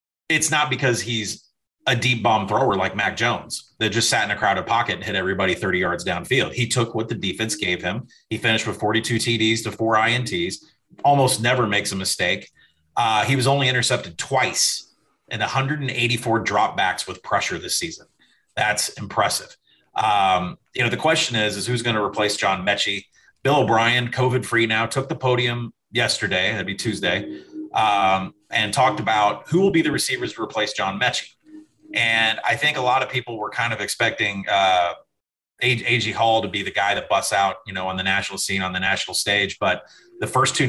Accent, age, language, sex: American, 30-49, English, male